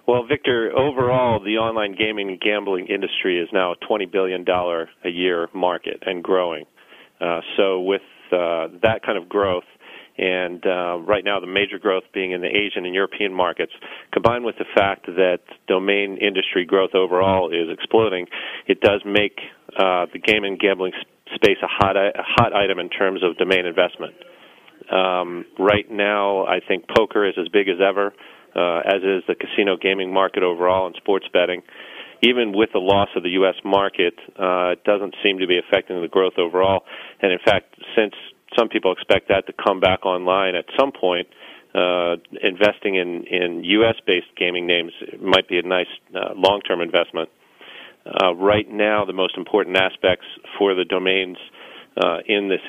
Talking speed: 175 wpm